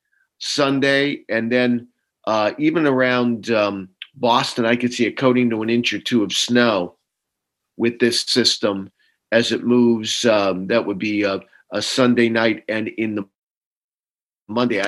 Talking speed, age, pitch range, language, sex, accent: 155 wpm, 50-69, 115-130 Hz, English, male, American